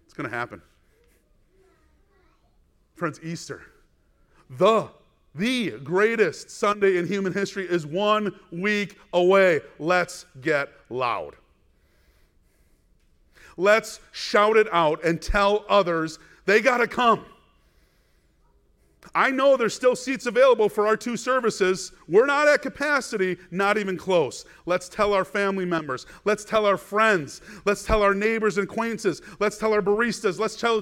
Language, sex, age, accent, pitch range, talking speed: English, male, 40-59, American, 180-230 Hz, 135 wpm